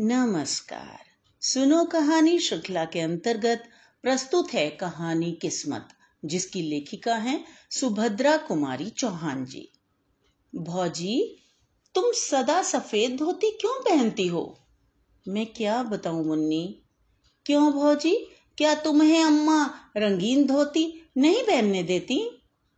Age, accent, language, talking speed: 50-69, native, Hindi, 105 wpm